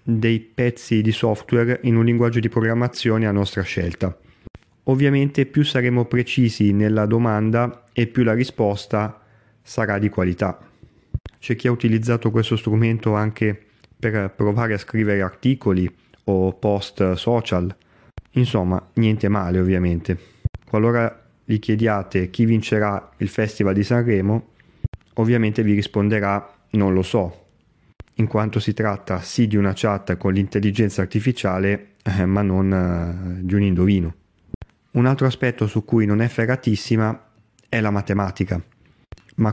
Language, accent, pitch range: Italian, native, 100-120 Hz